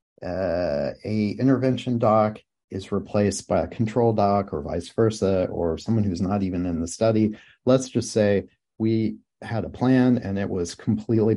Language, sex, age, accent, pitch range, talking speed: English, male, 40-59, American, 95-115 Hz, 170 wpm